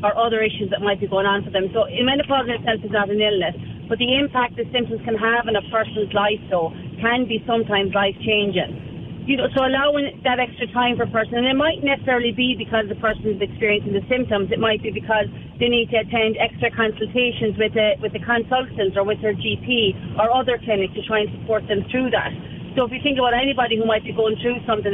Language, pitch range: English, 210-245 Hz